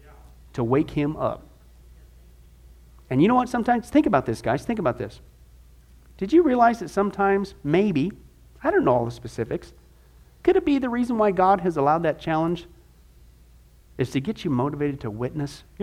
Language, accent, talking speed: English, American, 180 wpm